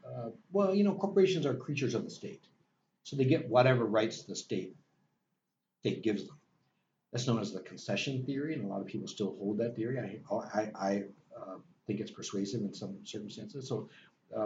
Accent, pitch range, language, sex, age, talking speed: American, 105-145 Hz, English, male, 60-79, 200 wpm